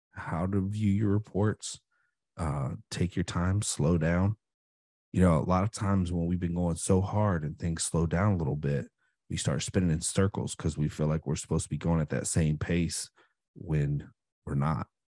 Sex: male